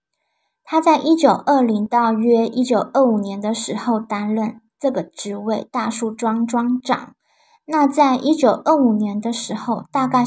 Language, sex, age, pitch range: Chinese, male, 20-39, 225-270 Hz